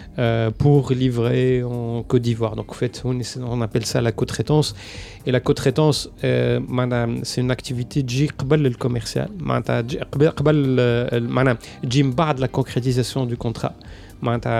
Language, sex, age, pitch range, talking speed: Arabic, male, 30-49, 120-140 Hz, 125 wpm